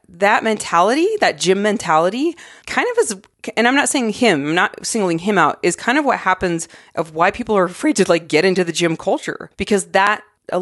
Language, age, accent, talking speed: English, 30-49, American, 215 wpm